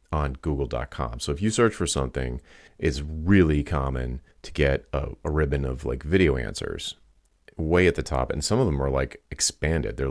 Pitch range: 70-85 Hz